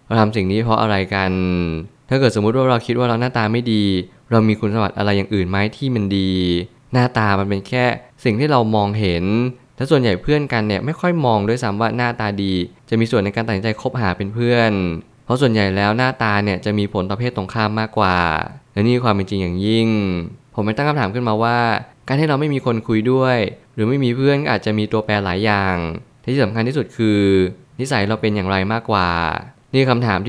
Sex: male